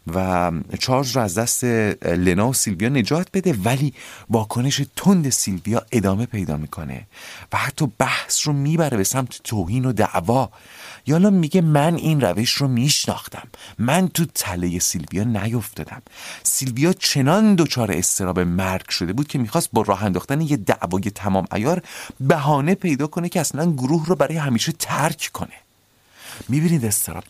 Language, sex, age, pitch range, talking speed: Persian, male, 40-59, 90-145 Hz, 150 wpm